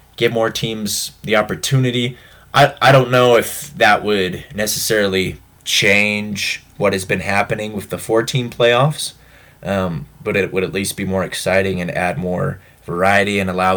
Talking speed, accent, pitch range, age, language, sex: 165 wpm, American, 95-125 Hz, 20-39, English, male